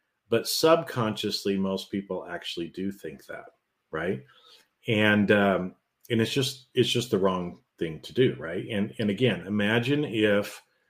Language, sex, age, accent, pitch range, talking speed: English, male, 40-59, American, 95-120 Hz, 150 wpm